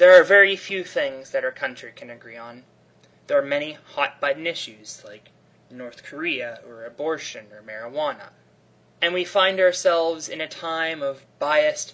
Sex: male